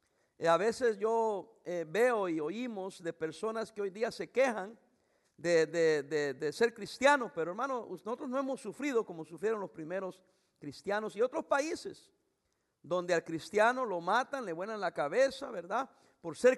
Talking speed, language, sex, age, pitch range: 165 wpm, English, male, 50-69, 175-255 Hz